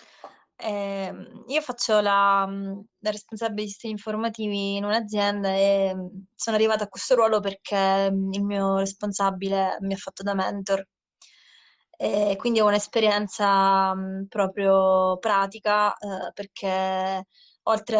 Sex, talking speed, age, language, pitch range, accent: female, 110 wpm, 20-39, Italian, 195-210 Hz, native